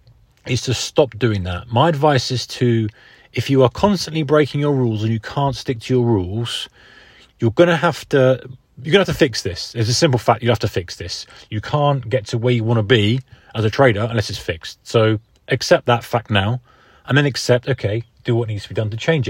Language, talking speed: English, 235 wpm